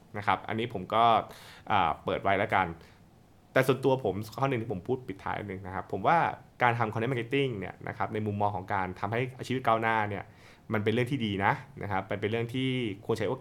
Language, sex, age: Thai, male, 20-39